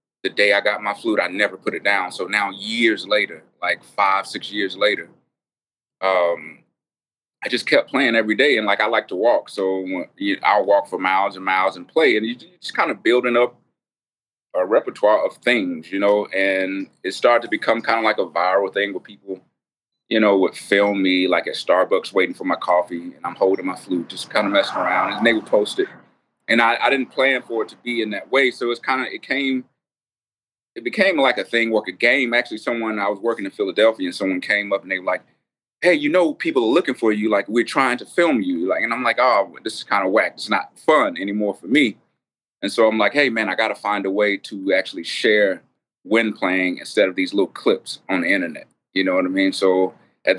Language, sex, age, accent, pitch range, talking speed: English, male, 30-49, American, 95-120 Hz, 235 wpm